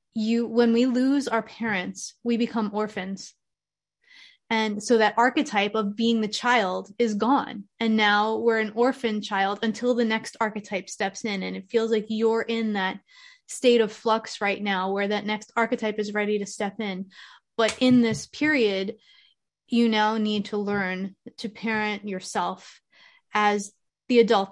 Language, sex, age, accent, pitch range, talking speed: English, female, 20-39, American, 205-230 Hz, 165 wpm